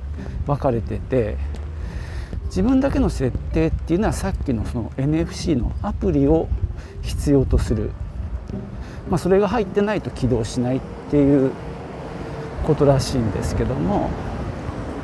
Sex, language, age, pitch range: male, Japanese, 50-69, 100-170 Hz